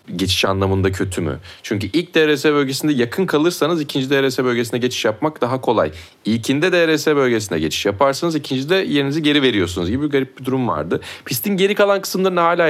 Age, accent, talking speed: 30-49, native, 175 wpm